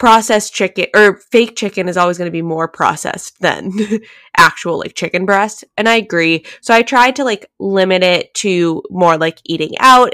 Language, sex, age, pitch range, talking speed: English, female, 10-29, 175-215 Hz, 190 wpm